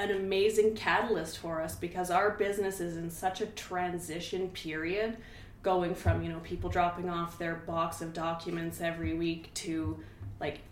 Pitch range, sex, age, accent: 165-200 Hz, female, 30-49, American